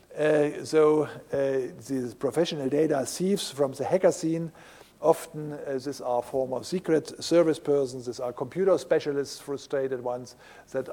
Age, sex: 50-69, male